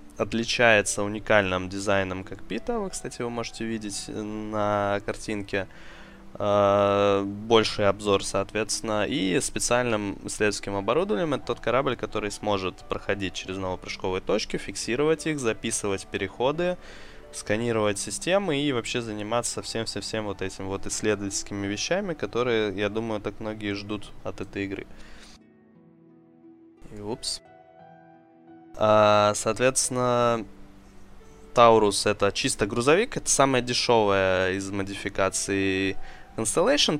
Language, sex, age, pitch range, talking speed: Russian, male, 20-39, 95-115 Hz, 105 wpm